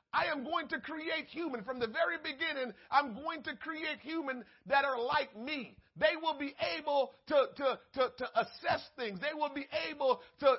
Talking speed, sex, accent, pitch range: 195 wpm, male, American, 245-315 Hz